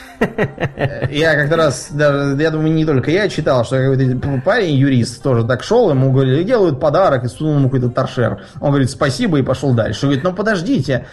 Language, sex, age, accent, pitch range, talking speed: Russian, male, 20-39, native, 125-155 Hz, 185 wpm